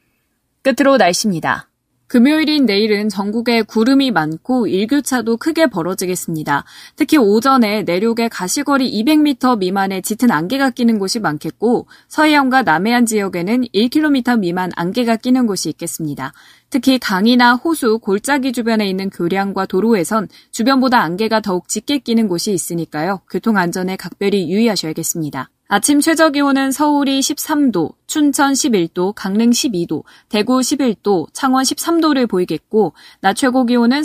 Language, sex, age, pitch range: Korean, female, 20-39, 185-265 Hz